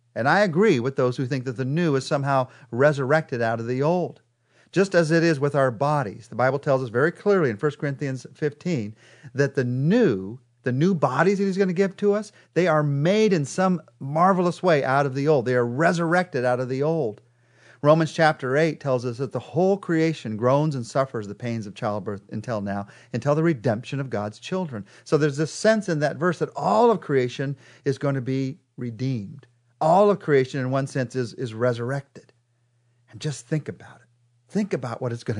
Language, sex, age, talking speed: English, male, 40-59, 210 wpm